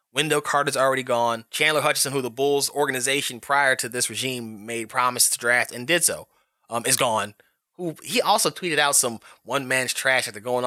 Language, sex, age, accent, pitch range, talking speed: English, male, 20-39, American, 125-180 Hz, 195 wpm